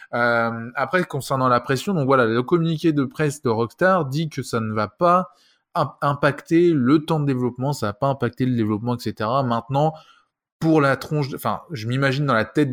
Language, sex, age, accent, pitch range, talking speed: French, male, 20-39, French, 120-145 Hz, 200 wpm